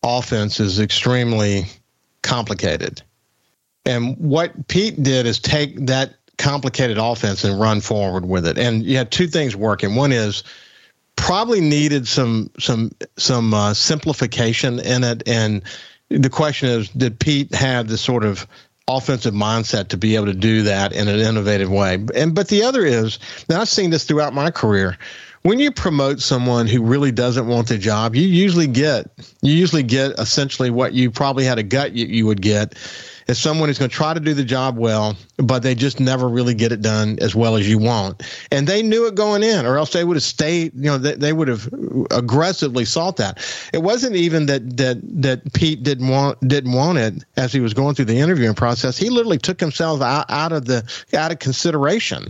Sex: male